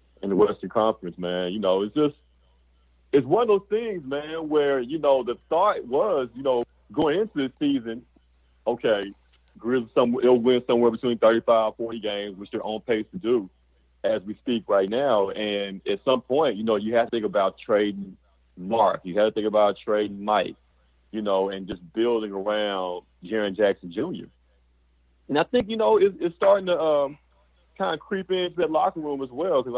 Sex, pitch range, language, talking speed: male, 90-140 Hz, English, 200 wpm